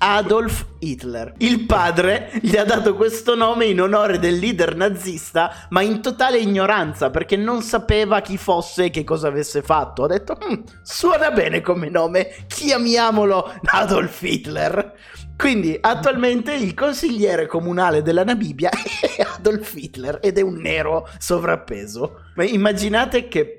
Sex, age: male, 30-49